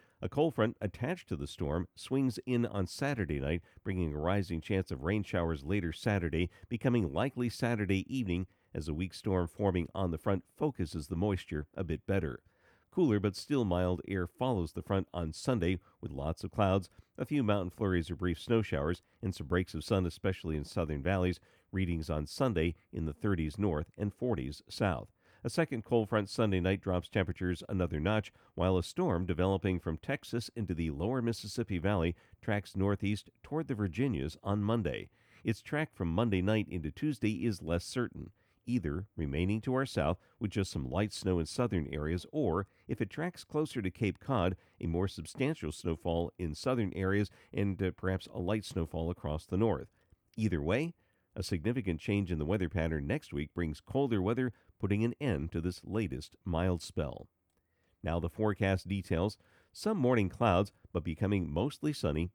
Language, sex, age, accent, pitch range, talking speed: English, male, 50-69, American, 85-110 Hz, 180 wpm